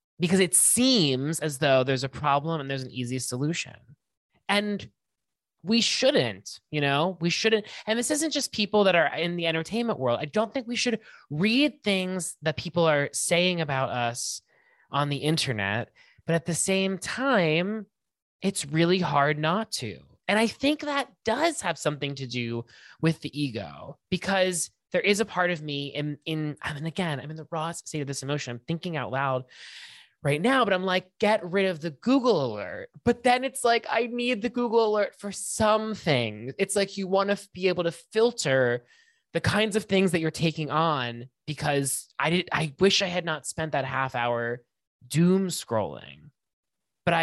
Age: 20-39